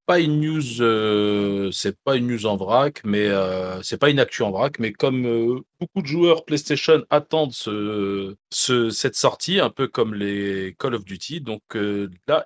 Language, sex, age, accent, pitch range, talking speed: French, male, 40-59, French, 110-170 Hz, 195 wpm